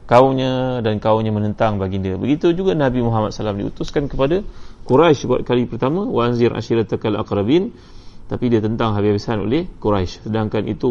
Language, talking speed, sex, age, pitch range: Malay, 155 wpm, male, 30-49, 105-120 Hz